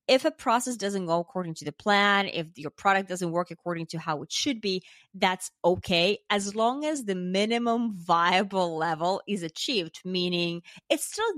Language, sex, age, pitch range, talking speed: English, female, 20-39, 170-215 Hz, 180 wpm